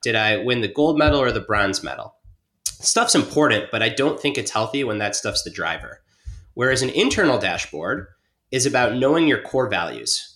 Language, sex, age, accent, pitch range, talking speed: English, male, 30-49, American, 105-150 Hz, 190 wpm